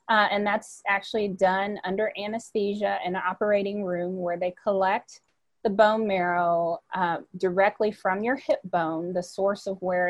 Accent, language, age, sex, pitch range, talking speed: American, English, 30-49, female, 185-220 Hz, 160 wpm